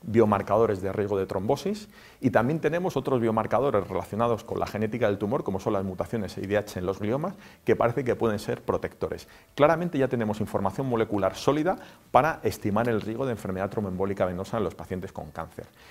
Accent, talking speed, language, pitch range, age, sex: Spanish, 185 wpm, English, 100-130 Hz, 40-59, male